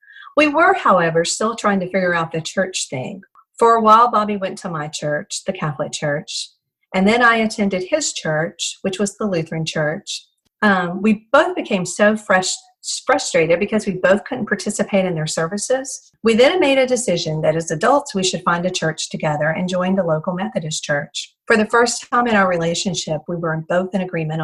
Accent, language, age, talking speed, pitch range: American, English, 40-59, 200 wpm, 170-230 Hz